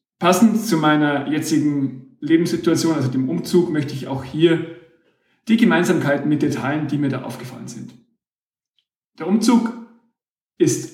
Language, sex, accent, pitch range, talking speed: German, male, German, 140-175 Hz, 125 wpm